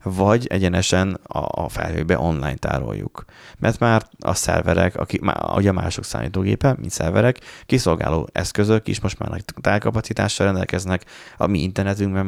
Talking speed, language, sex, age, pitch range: 125 wpm, Hungarian, male, 30-49, 85-110 Hz